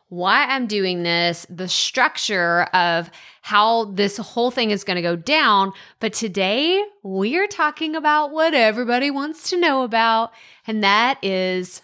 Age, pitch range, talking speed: 20-39, 190-250 Hz, 145 wpm